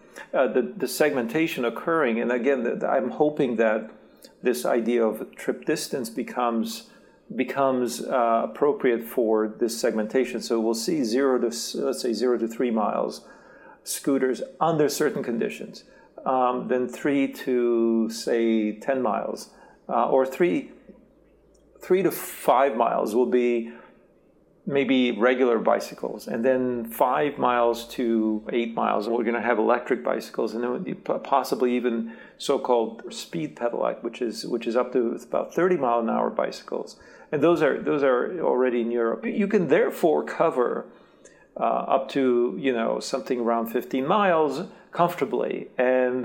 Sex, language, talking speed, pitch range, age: male, English, 145 wpm, 115-135 Hz, 50-69